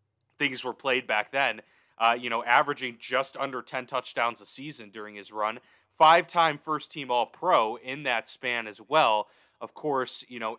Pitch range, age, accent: 110-130 Hz, 30-49, American